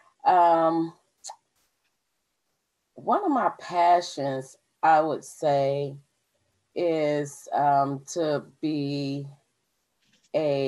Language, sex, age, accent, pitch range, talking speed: English, female, 30-49, American, 130-165 Hz, 75 wpm